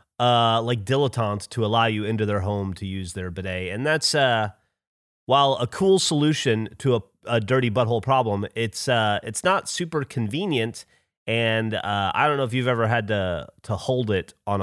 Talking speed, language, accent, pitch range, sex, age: 190 wpm, English, American, 105-150 Hz, male, 30-49